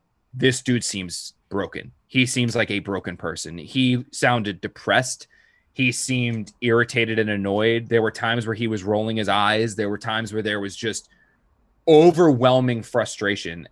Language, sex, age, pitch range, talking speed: English, male, 20-39, 115-130 Hz, 160 wpm